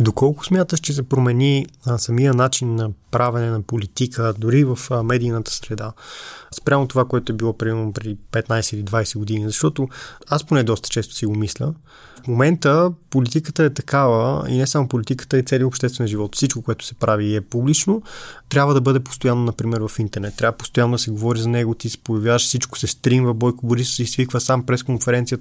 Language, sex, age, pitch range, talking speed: Bulgarian, male, 20-39, 115-140 Hz, 190 wpm